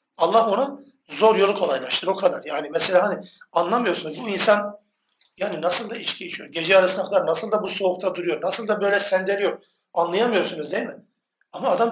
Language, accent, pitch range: Turkish, native, 160-210 Hz